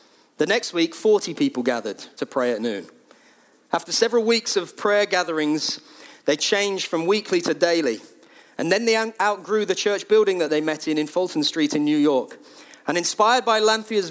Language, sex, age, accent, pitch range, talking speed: English, male, 40-59, British, 145-195 Hz, 185 wpm